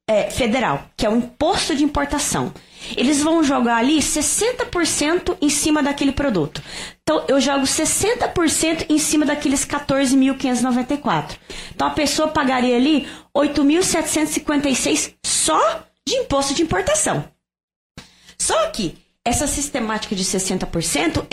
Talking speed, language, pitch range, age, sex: 115 wpm, Portuguese, 225-295 Hz, 20-39, female